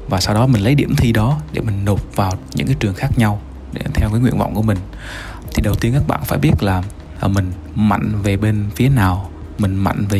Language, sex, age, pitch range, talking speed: Vietnamese, male, 20-39, 95-125 Hz, 245 wpm